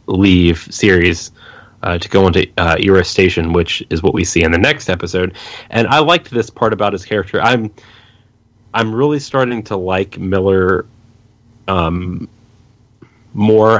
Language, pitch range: English, 90-115 Hz